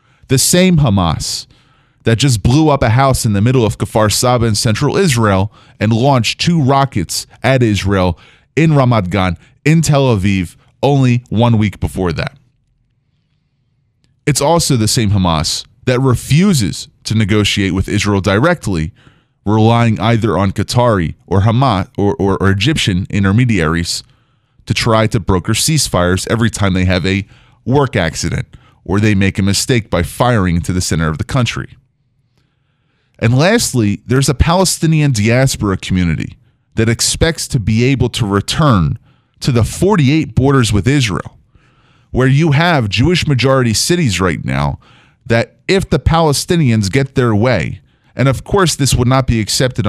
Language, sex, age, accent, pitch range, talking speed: English, male, 30-49, American, 105-140 Hz, 150 wpm